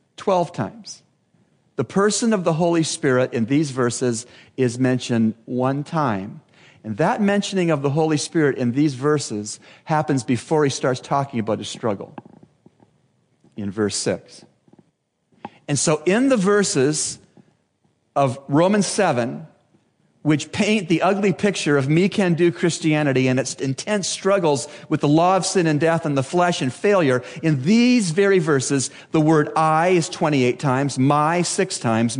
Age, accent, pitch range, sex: 40-59, American, 130-175 Hz, male